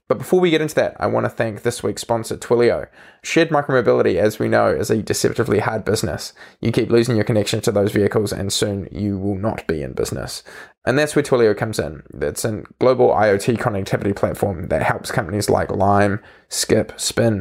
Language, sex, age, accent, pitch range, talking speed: English, male, 20-39, Australian, 105-125 Hz, 205 wpm